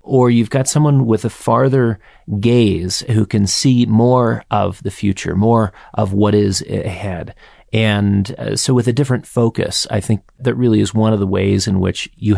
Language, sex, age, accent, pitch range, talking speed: English, male, 30-49, American, 95-115 Hz, 190 wpm